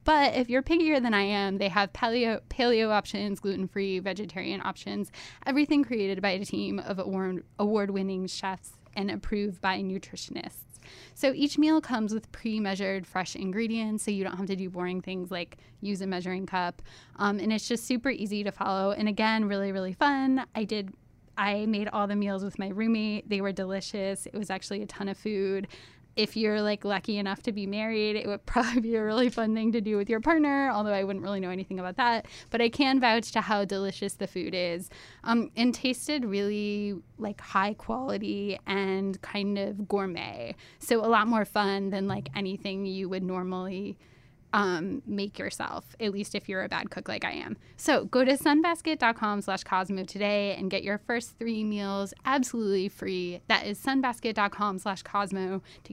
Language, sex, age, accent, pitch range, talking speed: English, female, 10-29, American, 195-225 Hz, 185 wpm